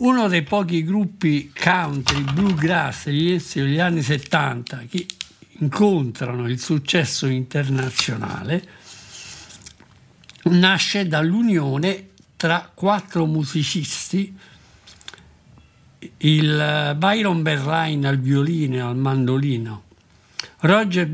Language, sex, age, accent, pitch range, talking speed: Italian, male, 60-79, native, 135-180 Hz, 80 wpm